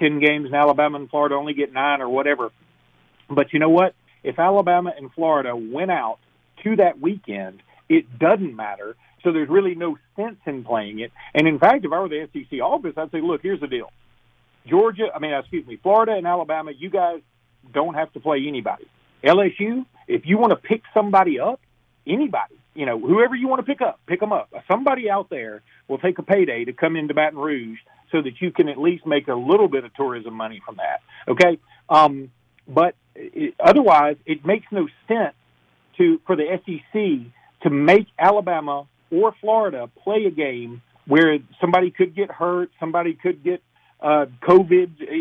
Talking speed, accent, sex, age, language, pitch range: 190 wpm, American, male, 40-59, English, 145-210 Hz